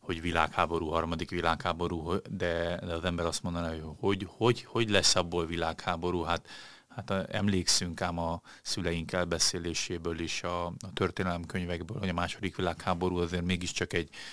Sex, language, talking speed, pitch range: male, Hungarian, 140 wpm, 85-95 Hz